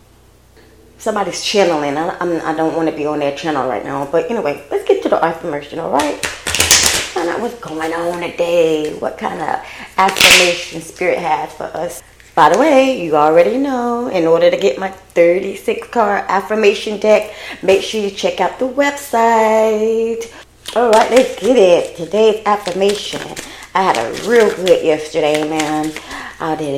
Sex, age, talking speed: female, 20-39, 170 wpm